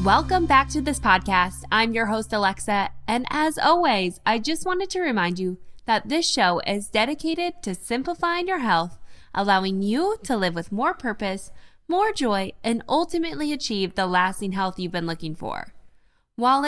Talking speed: 170 wpm